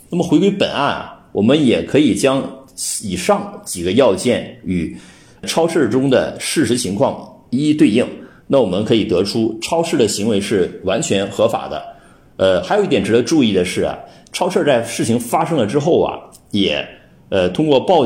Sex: male